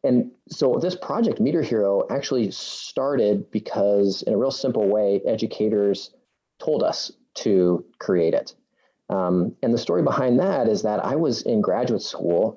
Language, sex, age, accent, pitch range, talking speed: English, male, 30-49, American, 95-120 Hz, 160 wpm